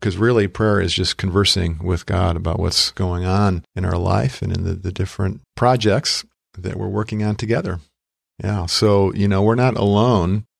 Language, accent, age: English, American, 50-69